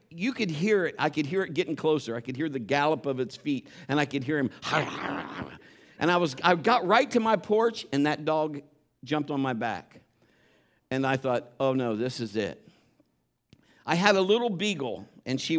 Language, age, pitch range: English, 50-69, 140-215 Hz